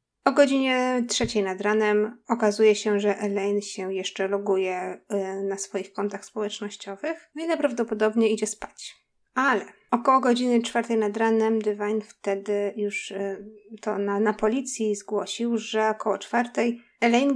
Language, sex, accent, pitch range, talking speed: Polish, female, native, 200-235 Hz, 130 wpm